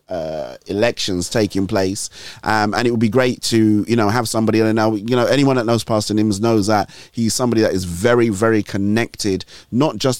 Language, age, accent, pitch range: English, 30-49, British, 100-115 Hz